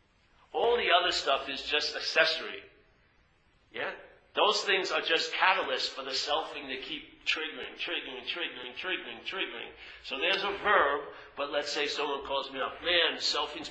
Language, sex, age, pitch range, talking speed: English, male, 50-69, 140-215 Hz, 160 wpm